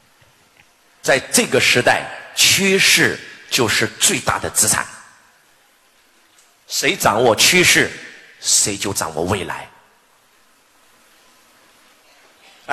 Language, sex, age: Chinese, male, 30-49